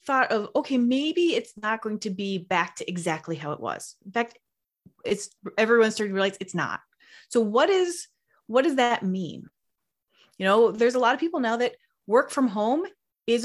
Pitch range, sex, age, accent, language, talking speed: 195-245 Hz, female, 30-49, American, English, 195 wpm